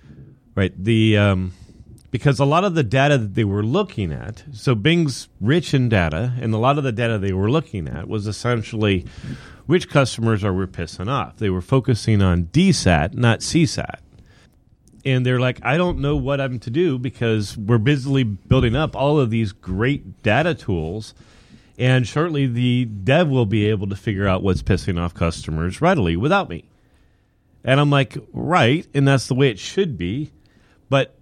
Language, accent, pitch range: English, American, 105-145 Hz